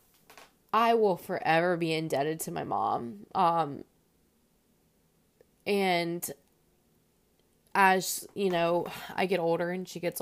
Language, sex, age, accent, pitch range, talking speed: English, female, 20-39, American, 150-185 Hz, 110 wpm